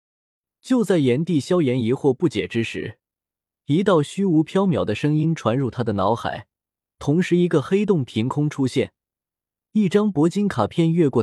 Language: Chinese